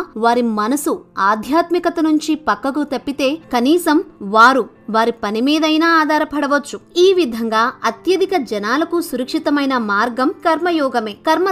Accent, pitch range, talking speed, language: native, 240-325 Hz, 105 wpm, Telugu